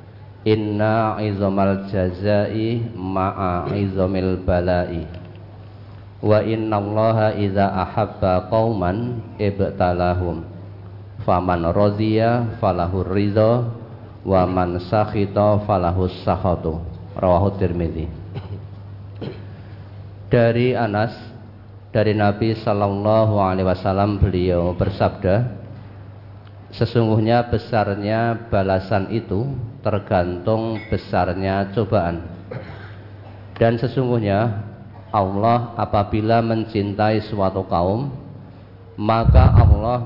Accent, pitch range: native, 95-110 Hz